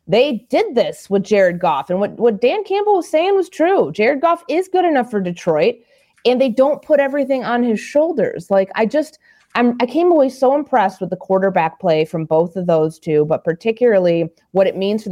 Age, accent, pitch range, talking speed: 30-49, American, 160-235 Hz, 220 wpm